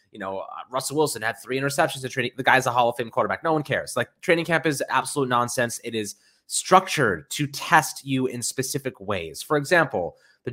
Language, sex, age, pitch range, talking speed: English, male, 20-39, 100-130 Hz, 205 wpm